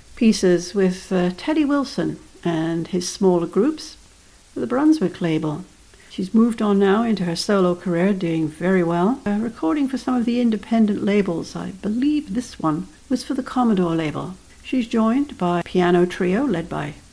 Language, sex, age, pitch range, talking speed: English, female, 60-79, 175-230 Hz, 170 wpm